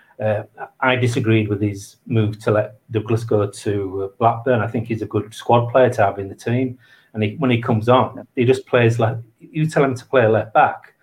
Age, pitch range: 40-59, 110-135 Hz